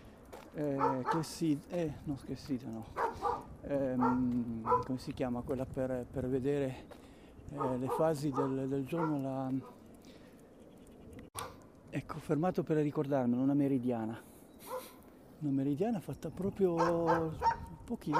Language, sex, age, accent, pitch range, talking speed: Italian, male, 50-69, native, 135-195 Hz, 115 wpm